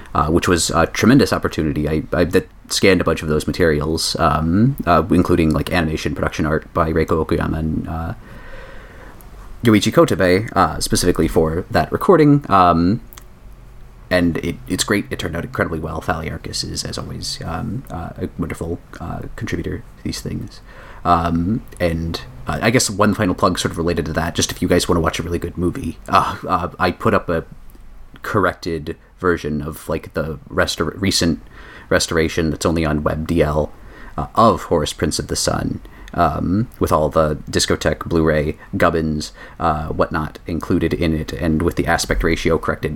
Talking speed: 175 wpm